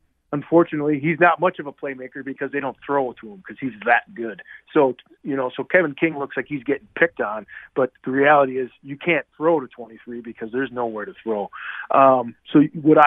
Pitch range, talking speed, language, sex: 125-155 Hz, 210 wpm, English, male